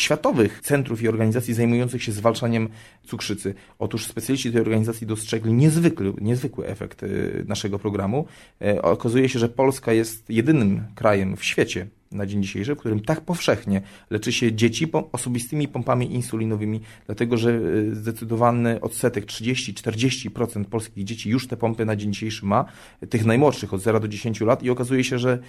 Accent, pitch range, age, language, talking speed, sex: native, 105-125 Hz, 30-49, Polish, 155 wpm, male